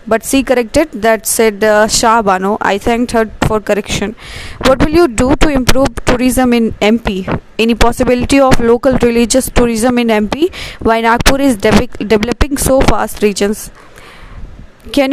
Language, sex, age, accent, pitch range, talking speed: English, female, 20-39, Indian, 220-260 Hz, 150 wpm